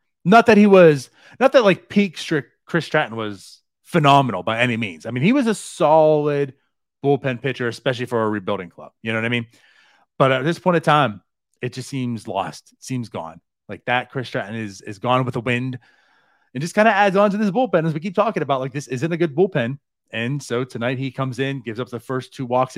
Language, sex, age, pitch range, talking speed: English, male, 30-49, 110-155 Hz, 235 wpm